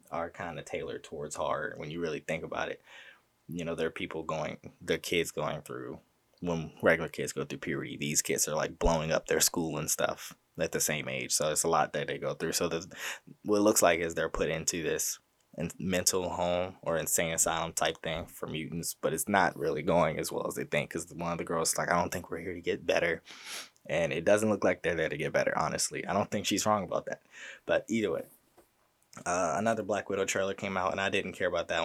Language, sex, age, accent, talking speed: English, male, 20-39, American, 240 wpm